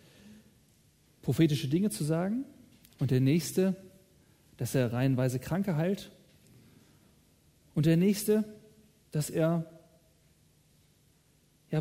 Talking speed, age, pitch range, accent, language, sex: 90 wpm, 40-59, 135-200 Hz, German, German, male